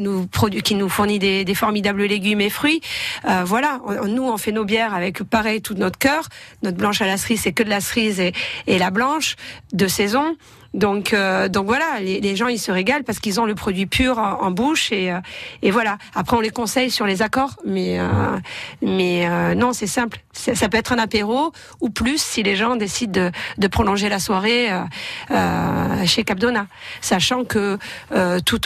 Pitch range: 185-225 Hz